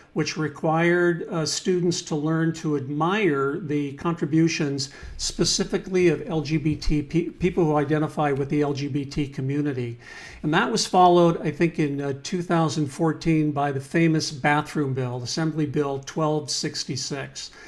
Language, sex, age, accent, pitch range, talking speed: English, male, 50-69, American, 145-170 Hz, 125 wpm